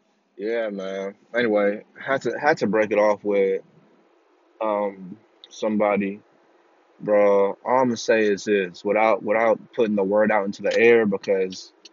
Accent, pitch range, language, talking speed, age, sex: American, 95-110 Hz, English, 150 wpm, 20-39, male